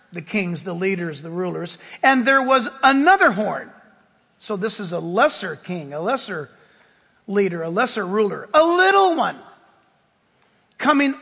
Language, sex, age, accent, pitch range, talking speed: English, male, 50-69, American, 250-345 Hz, 145 wpm